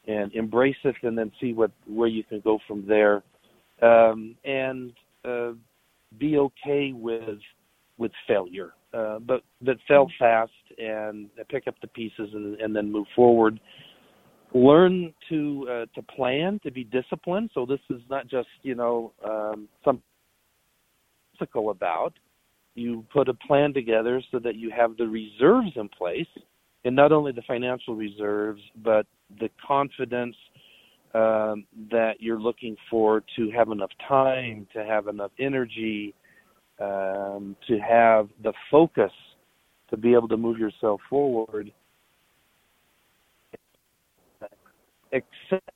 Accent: American